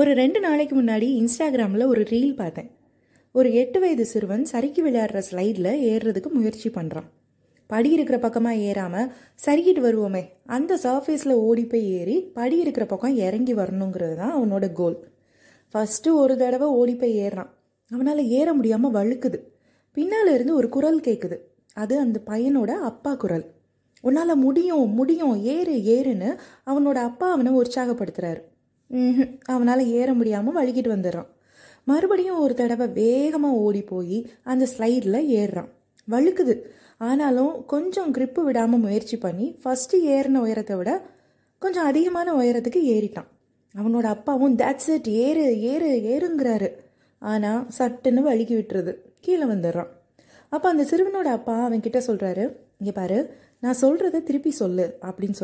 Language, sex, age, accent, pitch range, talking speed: Tamil, female, 20-39, native, 215-280 Hz, 130 wpm